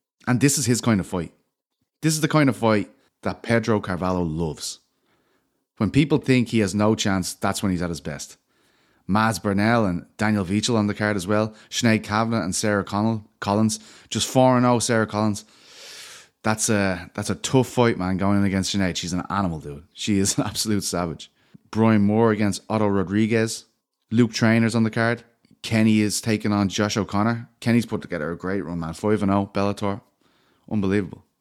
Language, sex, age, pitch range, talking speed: English, male, 30-49, 100-115 Hz, 180 wpm